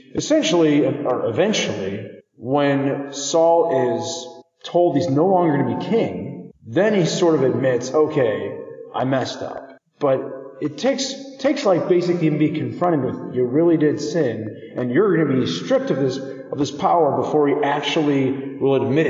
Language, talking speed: English, 170 wpm